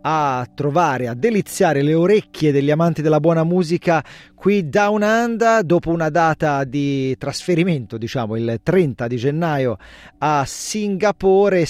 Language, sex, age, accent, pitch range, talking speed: Italian, male, 40-59, native, 130-180 Hz, 135 wpm